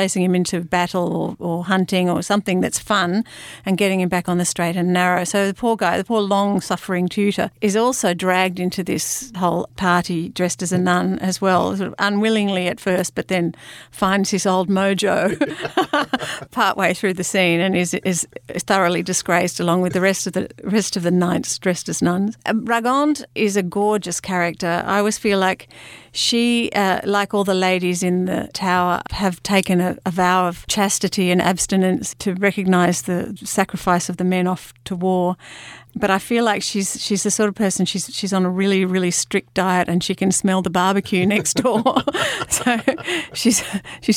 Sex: female